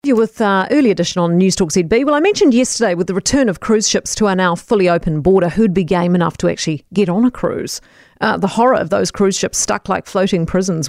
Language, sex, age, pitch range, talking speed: English, female, 40-59, 180-240 Hz, 250 wpm